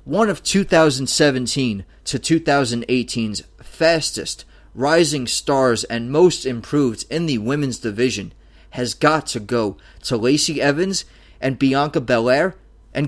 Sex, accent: male, American